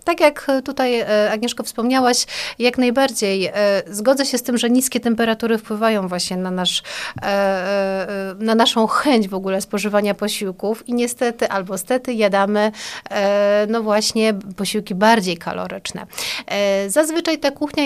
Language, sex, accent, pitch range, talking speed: Polish, female, native, 195-240 Hz, 130 wpm